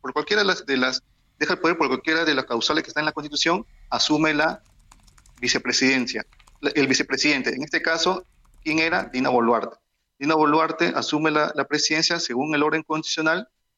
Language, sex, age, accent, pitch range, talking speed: Spanish, male, 40-59, Venezuelan, 125-155 Hz, 185 wpm